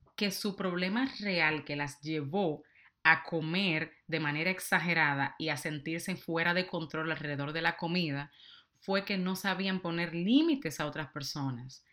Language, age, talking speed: Spanish, 30-49, 155 wpm